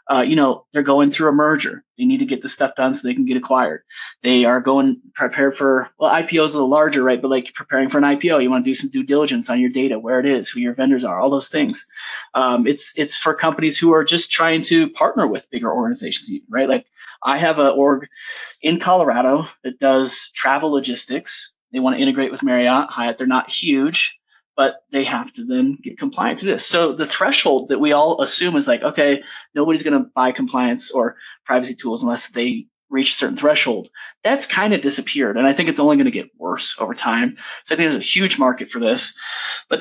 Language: English